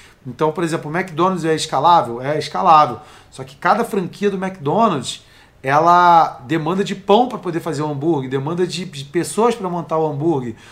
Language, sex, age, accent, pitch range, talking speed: Portuguese, male, 40-59, Brazilian, 155-205 Hz, 175 wpm